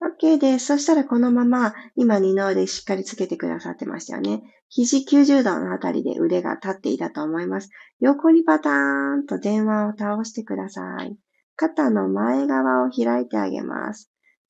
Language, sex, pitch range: Japanese, female, 190-280 Hz